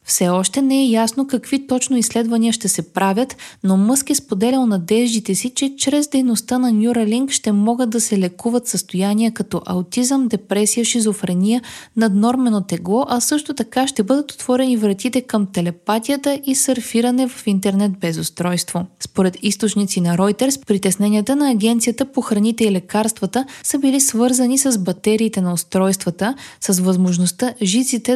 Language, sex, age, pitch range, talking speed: Bulgarian, female, 20-39, 185-245 Hz, 150 wpm